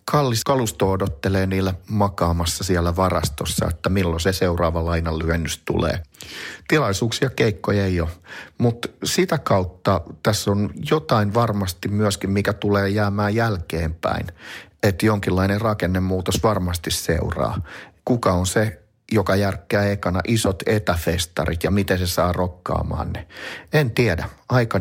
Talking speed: 125 wpm